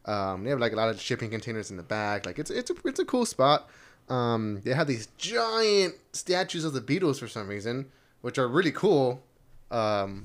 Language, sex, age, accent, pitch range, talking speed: English, male, 10-29, American, 100-125 Hz, 215 wpm